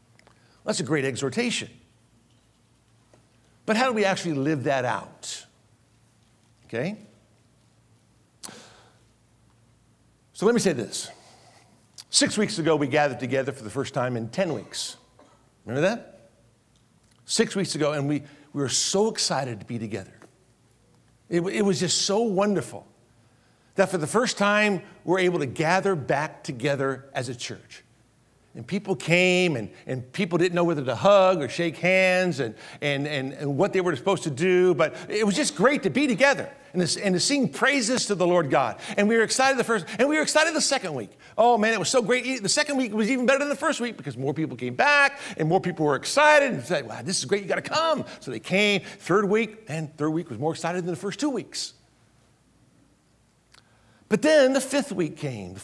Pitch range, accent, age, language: 125-205 Hz, American, 60-79, English